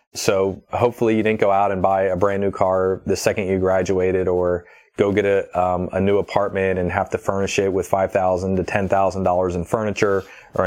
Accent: American